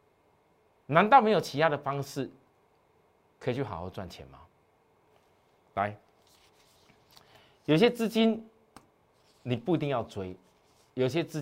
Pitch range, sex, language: 120-195 Hz, male, Chinese